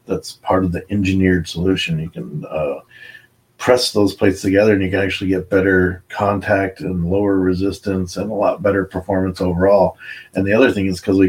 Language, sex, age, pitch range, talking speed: English, male, 30-49, 90-100 Hz, 190 wpm